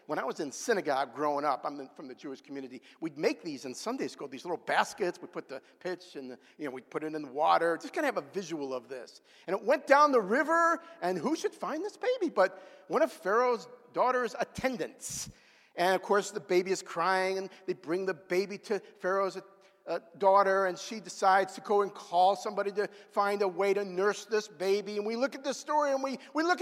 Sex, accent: male, American